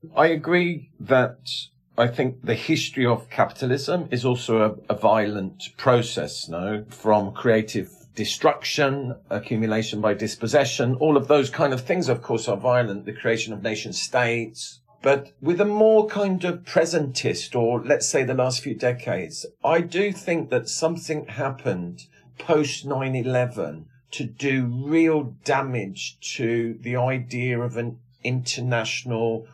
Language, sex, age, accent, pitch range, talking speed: English, male, 50-69, British, 115-140 Hz, 145 wpm